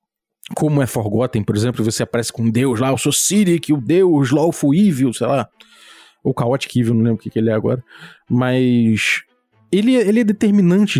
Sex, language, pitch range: male, Portuguese, 125-170 Hz